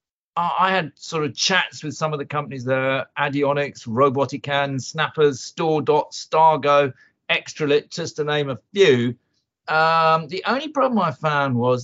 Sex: male